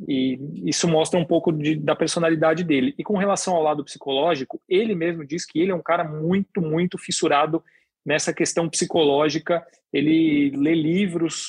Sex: male